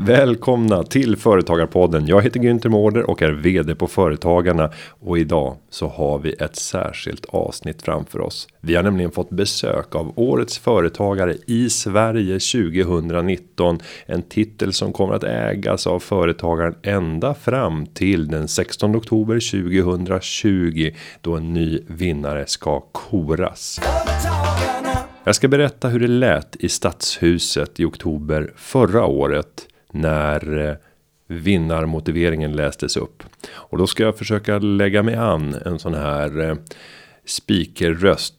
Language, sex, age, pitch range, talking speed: Swedish, male, 30-49, 80-105 Hz, 130 wpm